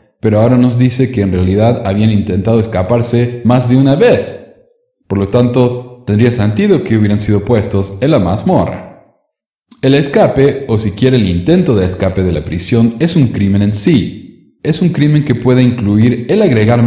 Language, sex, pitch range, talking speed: Spanish, male, 100-125 Hz, 180 wpm